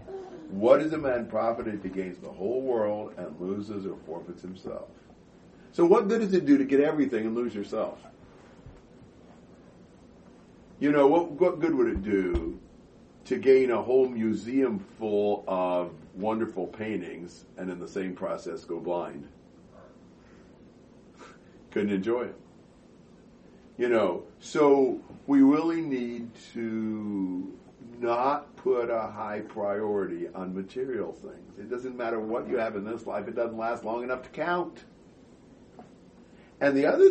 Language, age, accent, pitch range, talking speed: English, 50-69, American, 110-145 Hz, 145 wpm